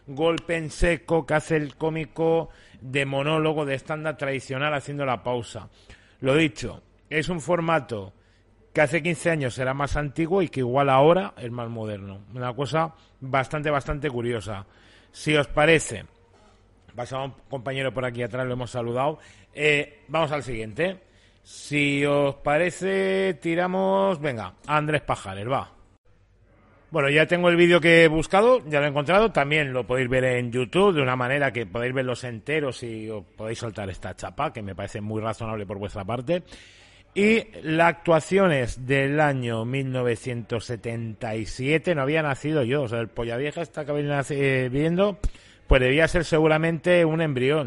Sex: male